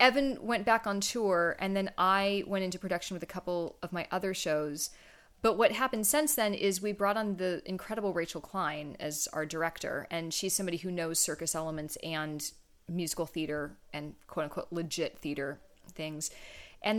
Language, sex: English, female